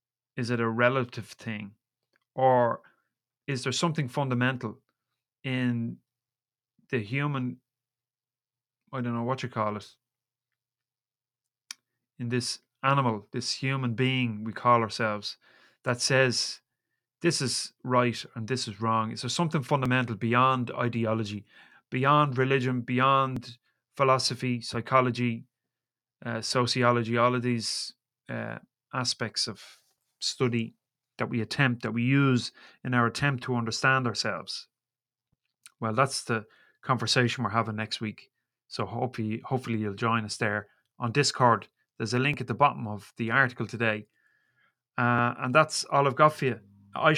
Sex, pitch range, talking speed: male, 115-130 Hz, 135 wpm